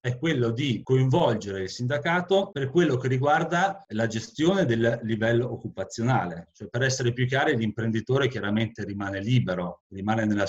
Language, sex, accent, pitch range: Italian, male, native, 105-130 Hz